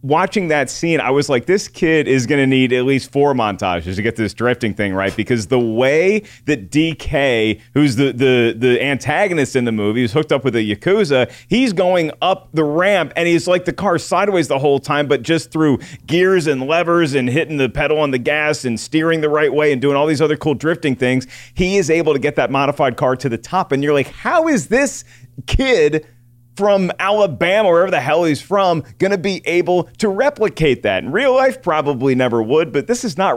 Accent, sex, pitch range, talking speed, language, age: American, male, 125-165 Hz, 220 wpm, English, 30-49